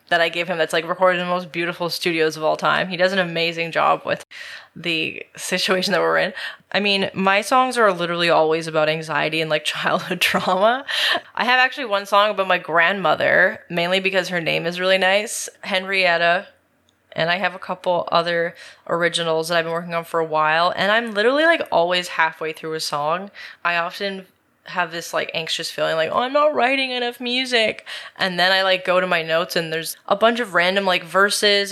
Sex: female